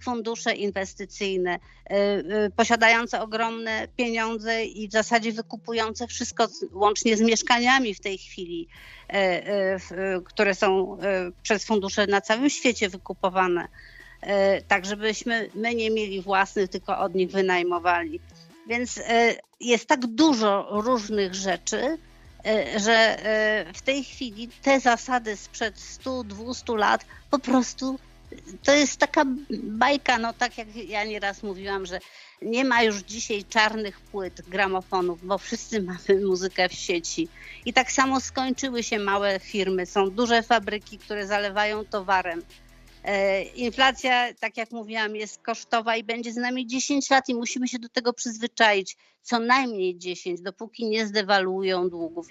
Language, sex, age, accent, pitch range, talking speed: Polish, female, 50-69, native, 195-240 Hz, 130 wpm